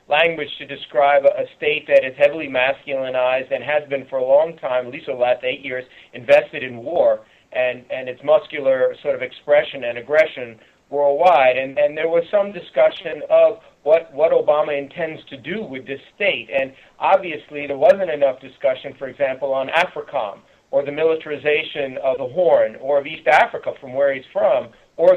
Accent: American